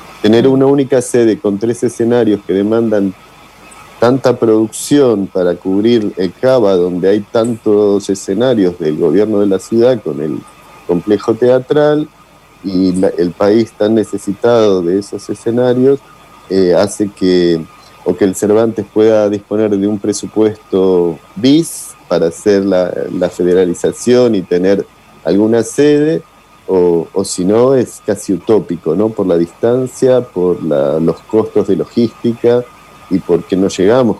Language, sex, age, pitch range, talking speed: Spanish, male, 40-59, 95-120 Hz, 135 wpm